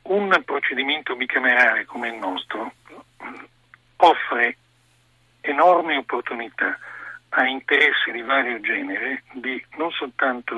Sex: male